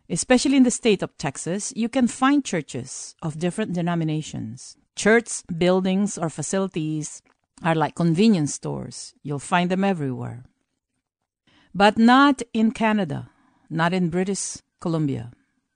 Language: English